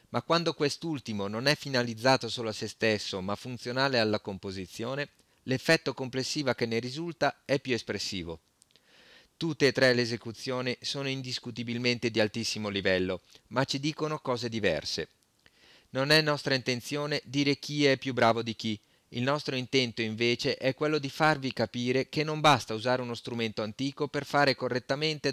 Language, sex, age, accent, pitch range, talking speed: Italian, male, 40-59, native, 115-145 Hz, 160 wpm